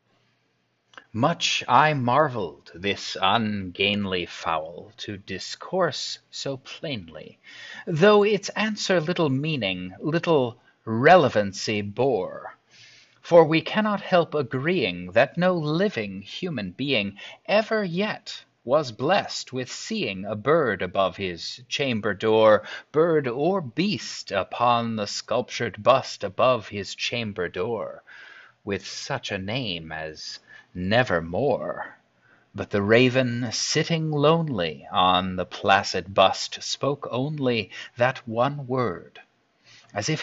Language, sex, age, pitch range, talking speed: English, male, 30-49, 105-155 Hz, 110 wpm